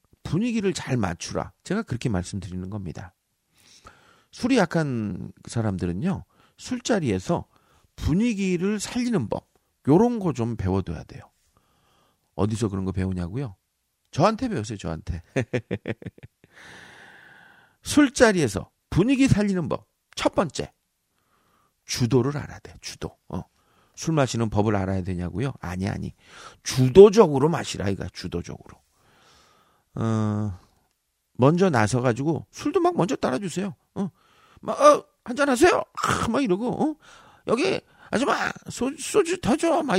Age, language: 40-59, Korean